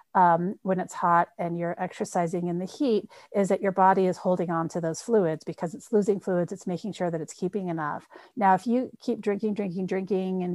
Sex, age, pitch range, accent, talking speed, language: female, 40-59, 175-205 Hz, American, 220 wpm, English